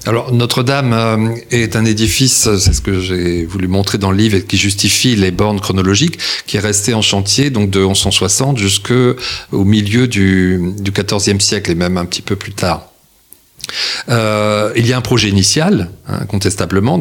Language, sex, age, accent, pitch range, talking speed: French, male, 40-59, French, 90-110 Hz, 175 wpm